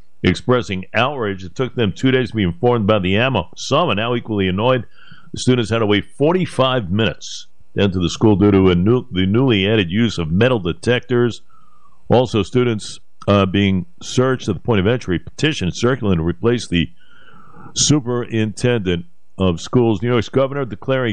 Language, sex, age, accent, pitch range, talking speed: English, male, 60-79, American, 90-120 Hz, 175 wpm